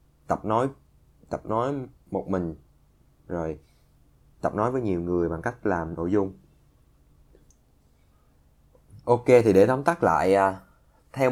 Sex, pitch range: male, 85-110 Hz